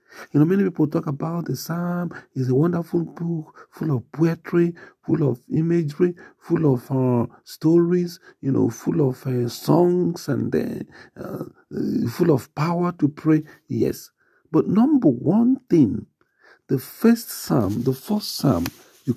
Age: 50-69